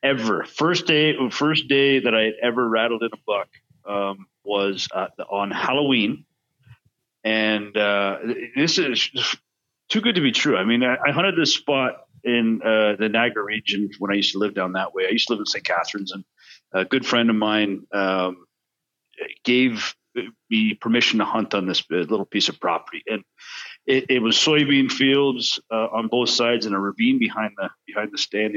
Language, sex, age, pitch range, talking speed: English, male, 40-59, 105-125 Hz, 190 wpm